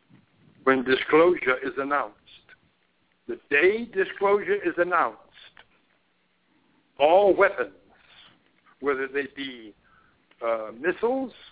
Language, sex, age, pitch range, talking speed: English, male, 60-79, 130-200 Hz, 85 wpm